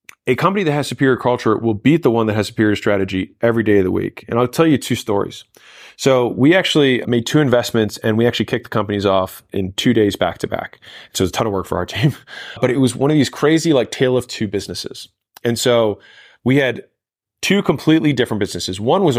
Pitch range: 100-130 Hz